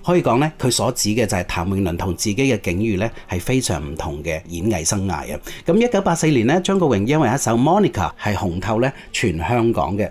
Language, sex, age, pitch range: Chinese, male, 30-49, 95-140 Hz